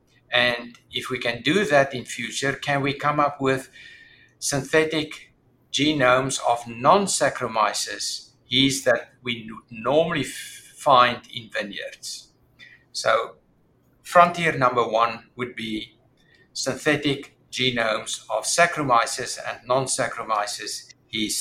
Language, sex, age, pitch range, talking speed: English, male, 60-79, 125-160 Hz, 105 wpm